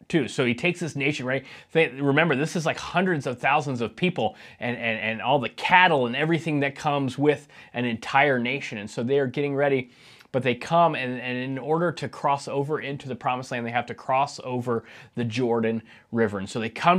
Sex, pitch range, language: male, 120-150 Hz, English